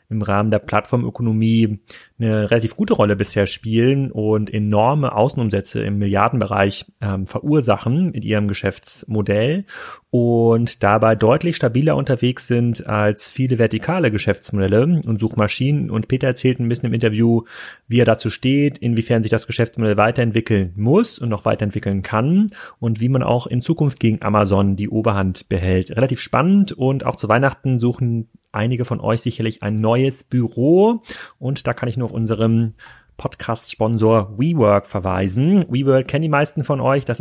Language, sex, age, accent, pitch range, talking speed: German, male, 30-49, German, 105-130 Hz, 155 wpm